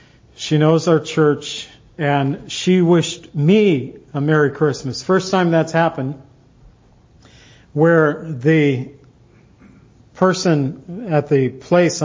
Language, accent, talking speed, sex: English, American, 105 wpm, male